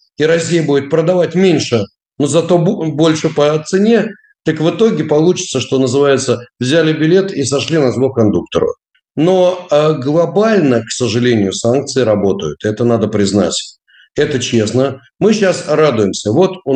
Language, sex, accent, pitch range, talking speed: Russian, male, native, 120-165 Hz, 140 wpm